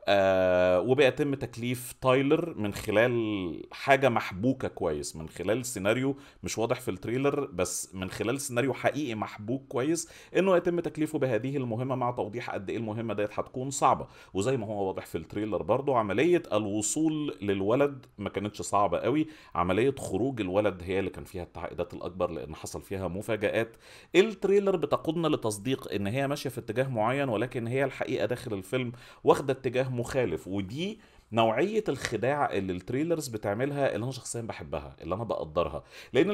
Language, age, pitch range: Arabic, 40-59, 105-140 Hz